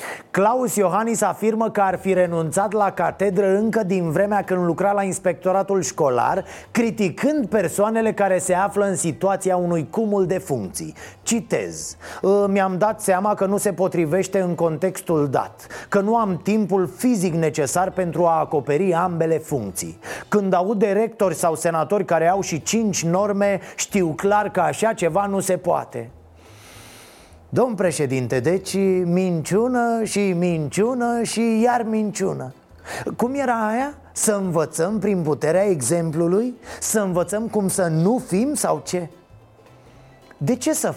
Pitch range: 160-205 Hz